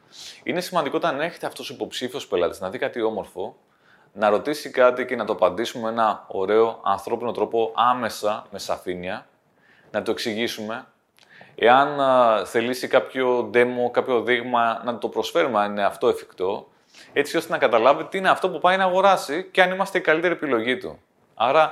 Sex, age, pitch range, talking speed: male, 30-49, 115-150 Hz, 170 wpm